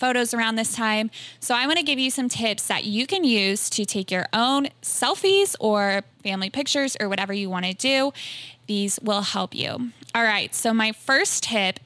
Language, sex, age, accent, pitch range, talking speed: English, female, 20-39, American, 200-255 Hz, 200 wpm